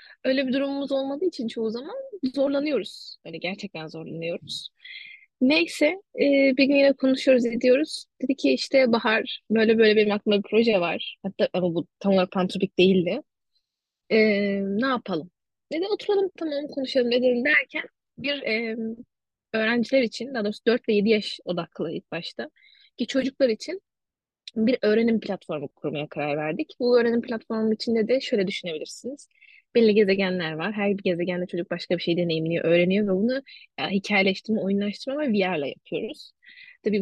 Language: Turkish